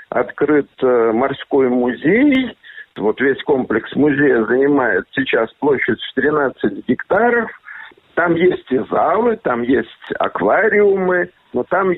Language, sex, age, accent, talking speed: Russian, male, 60-79, native, 110 wpm